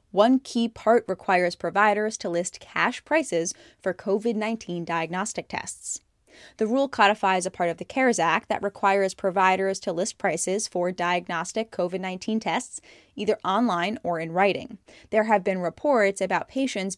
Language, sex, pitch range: English, female, 180-220 Hz